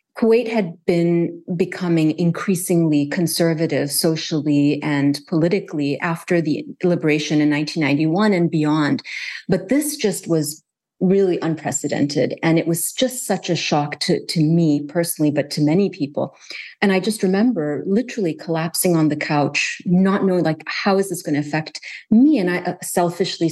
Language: English